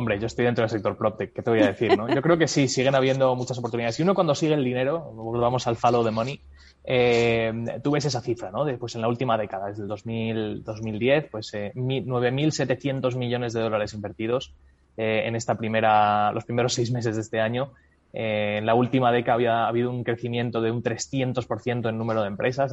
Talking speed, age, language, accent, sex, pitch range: 220 wpm, 20-39, Spanish, Spanish, male, 110-130 Hz